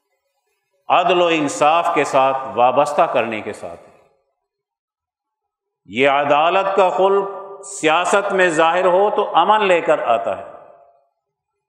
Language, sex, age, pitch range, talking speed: Urdu, male, 50-69, 150-205 Hz, 120 wpm